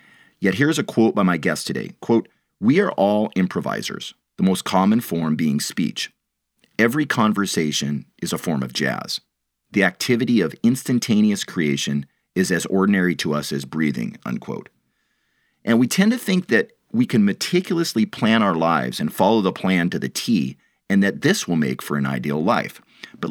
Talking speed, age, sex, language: 175 wpm, 40-59, male, English